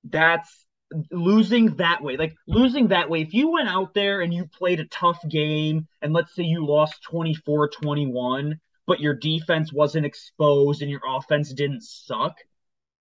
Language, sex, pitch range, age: English, male, 150-200 Hz, 20-39